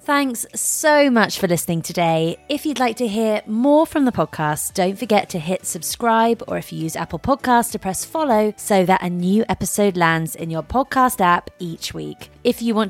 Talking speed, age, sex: 205 wpm, 20-39, female